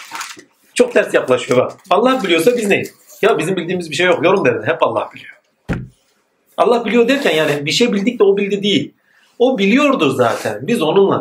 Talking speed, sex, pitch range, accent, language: 180 wpm, male, 135-200 Hz, native, Turkish